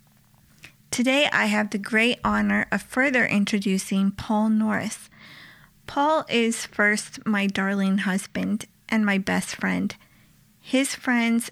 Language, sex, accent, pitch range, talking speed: English, female, American, 205-240 Hz, 120 wpm